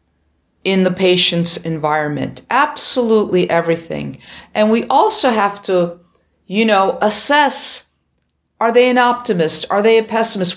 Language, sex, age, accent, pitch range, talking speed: English, female, 50-69, American, 175-230 Hz, 125 wpm